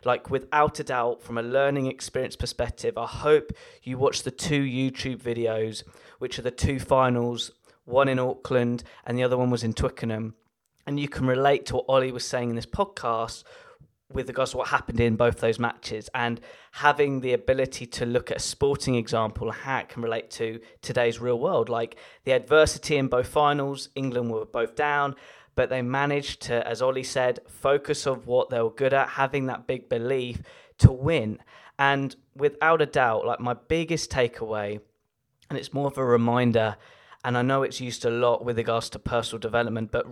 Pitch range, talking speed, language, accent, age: 115-140 Hz, 195 wpm, English, British, 20-39